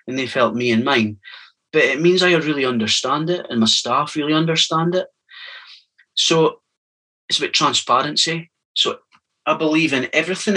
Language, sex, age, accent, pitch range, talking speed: English, male, 30-49, British, 110-155 Hz, 160 wpm